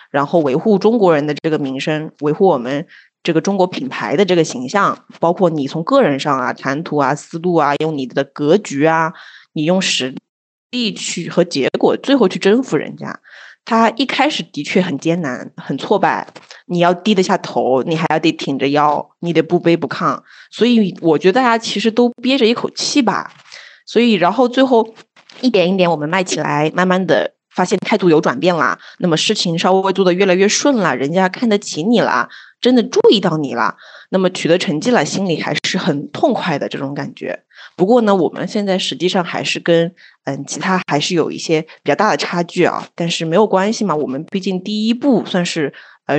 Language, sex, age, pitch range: Chinese, female, 20-39, 155-215 Hz